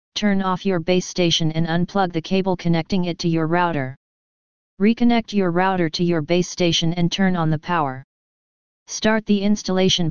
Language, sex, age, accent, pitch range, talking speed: English, female, 40-59, American, 165-190 Hz, 170 wpm